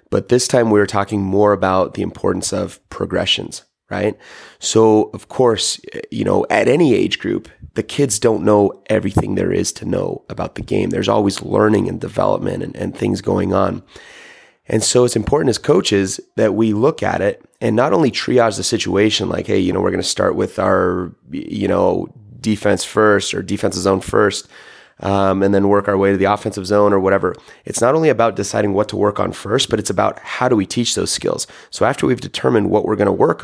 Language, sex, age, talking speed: English, male, 30-49, 215 wpm